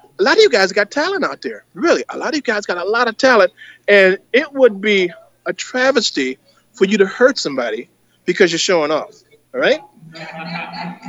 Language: English